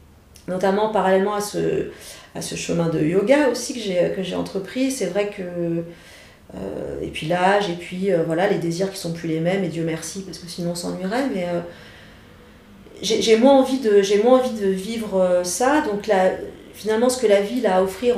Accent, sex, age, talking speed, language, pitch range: French, female, 40-59, 220 wpm, French, 170-210 Hz